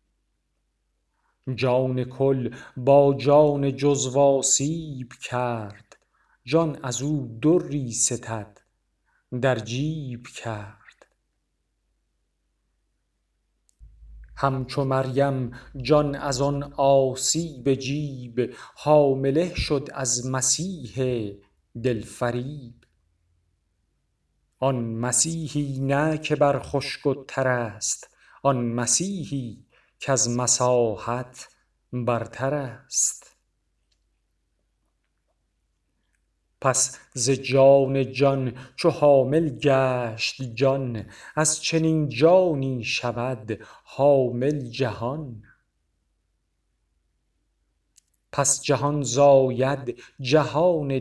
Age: 40-59